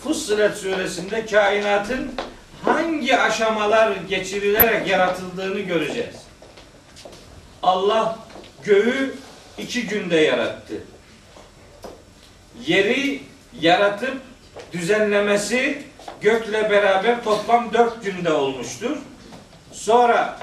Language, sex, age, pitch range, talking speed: Turkish, male, 50-69, 185-220 Hz, 70 wpm